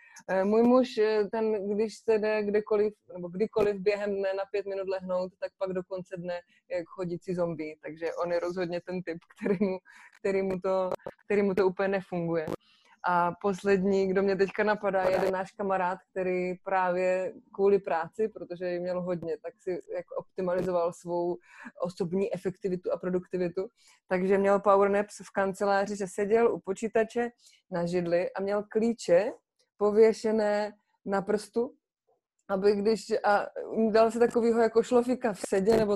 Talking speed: 155 wpm